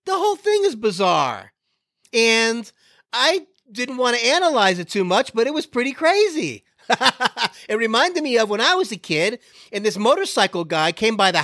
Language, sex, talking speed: English, male, 185 wpm